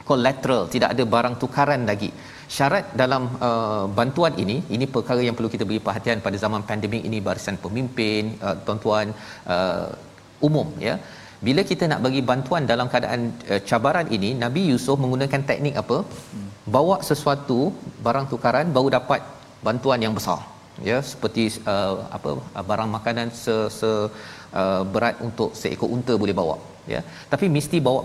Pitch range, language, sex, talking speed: 115-140 Hz, Malayalam, male, 155 wpm